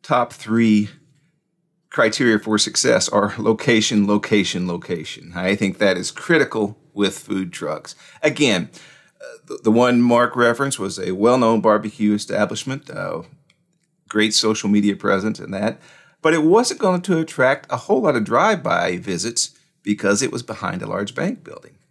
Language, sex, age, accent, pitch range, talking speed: English, male, 40-59, American, 105-150 Hz, 155 wpm